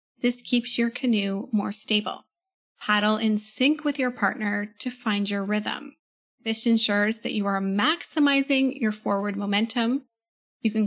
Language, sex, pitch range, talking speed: English, female, 210-245 Hz, 150 wpm